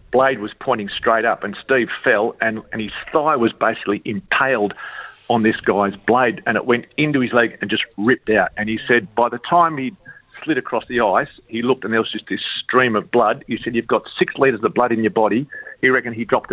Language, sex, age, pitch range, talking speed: English, male, 50-69, 110-120 Hz, 235 wpm